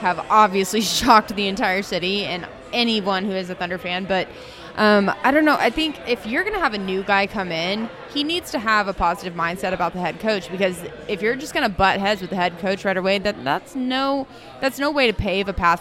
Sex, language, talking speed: female, English, 245 wpm